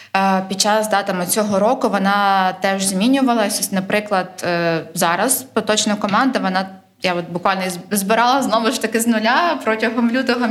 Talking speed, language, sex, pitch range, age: 135 wpm, Ukrainian, female, 180-225 Hz, 20-39